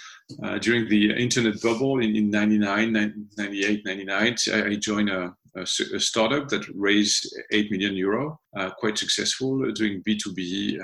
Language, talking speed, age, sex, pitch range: English, 150 wpm, 40-59, male, 95-110 Hz